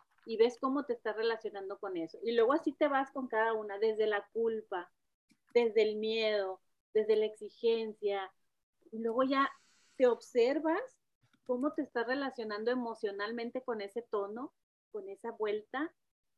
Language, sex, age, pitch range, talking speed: Spanish, female, 30-49, 210-260 Hz, 150 wpm